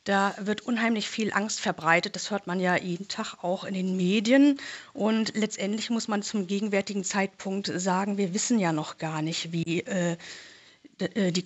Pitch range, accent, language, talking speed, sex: 185-220 Hz, German, German, 175 wpm, female